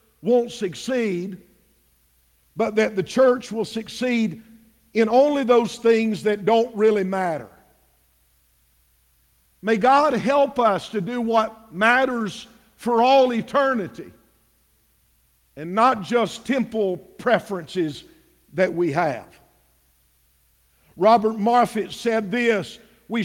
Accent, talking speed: American, 105 wpm